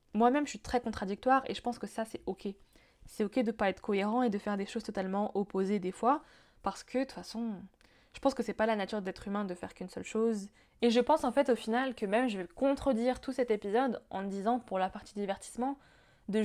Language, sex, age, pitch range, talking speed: French, female, 20-39, 205-245 Hz, 255 wpm